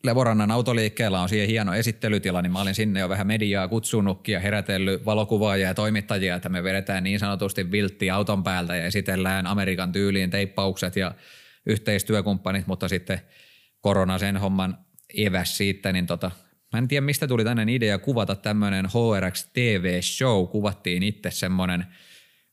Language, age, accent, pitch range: Finnish, 30-49, native, 95-115 Hz